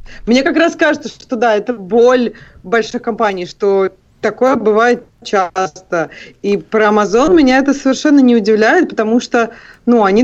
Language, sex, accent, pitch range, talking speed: Russian, female, native, 205-255 Hz, 150 wpm